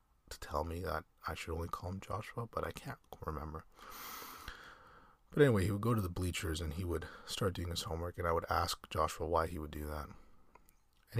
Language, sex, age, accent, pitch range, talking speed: English, male, 30-49, American, 75-85 Hz, 215 wpm